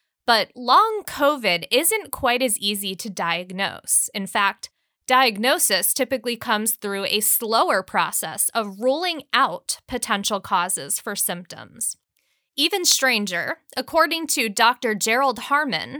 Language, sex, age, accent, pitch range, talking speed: English, female, 20-39, American, 195-265 Hz, 120 wpm